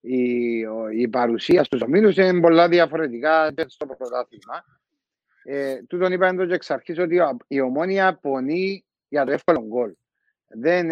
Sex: male